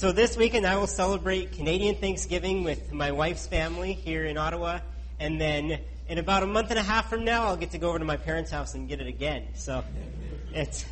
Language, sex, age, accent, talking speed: English, male, 40-59, American, 225 wpm